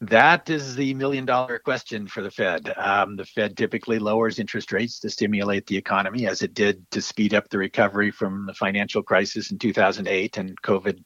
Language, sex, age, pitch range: English, male, 50-69, 95-110 Hz